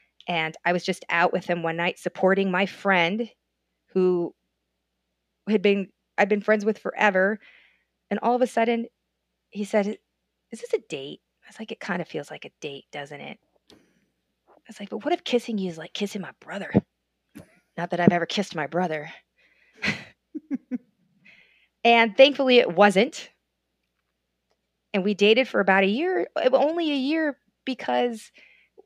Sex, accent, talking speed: female, American, 160 wpm